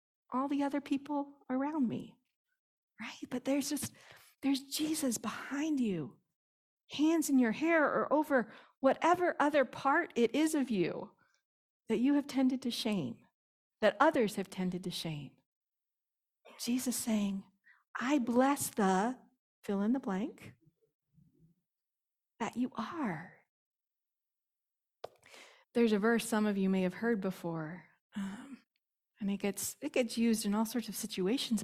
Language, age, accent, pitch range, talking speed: English, 40-59, American, 200-270 Hz, 135 wpm